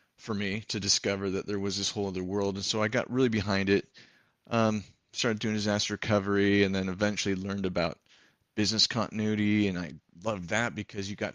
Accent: American